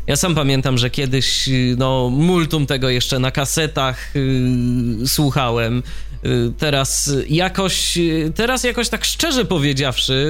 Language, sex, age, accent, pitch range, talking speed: Polish, male, 20-39, native, 130-165 Hz, 130 wpm